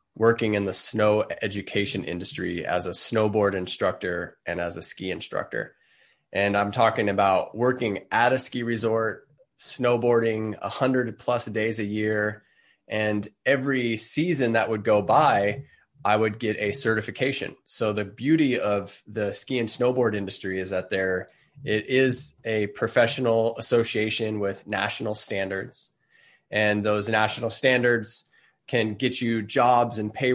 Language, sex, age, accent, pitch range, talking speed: English, male, 20-39, American, 105-125 Hz, 145 wpm